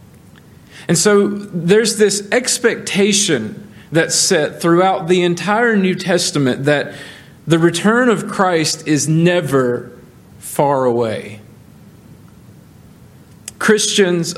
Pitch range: 155-205 Hz